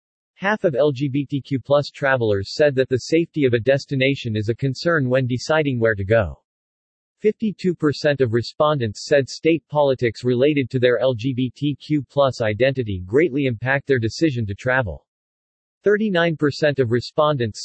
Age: 40-59